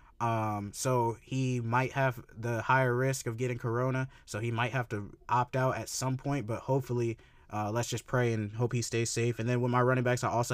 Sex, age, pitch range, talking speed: male, 20-39, 115-130 Hz, 230 wpm